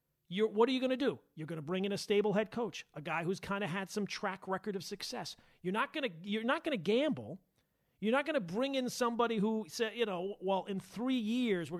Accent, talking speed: American, 290 wpm